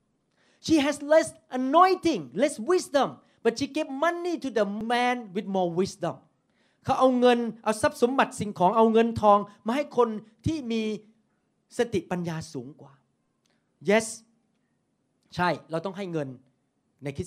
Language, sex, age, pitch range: Thai, male, 30-49, 165-225 Hz